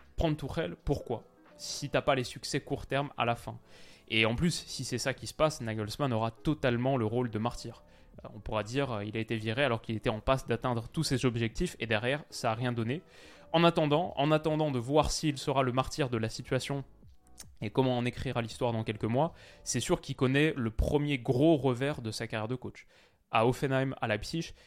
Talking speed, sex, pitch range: 220 wpm, male, 115-150 Hz